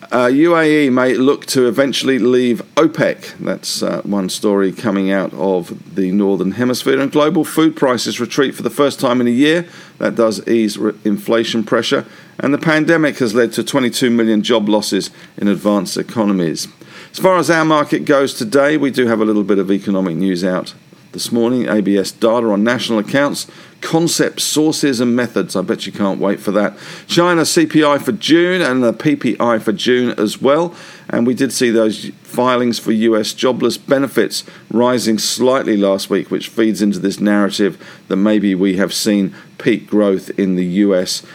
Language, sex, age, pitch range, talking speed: English, male, 50-69, 105-140 Hz, 180 wpm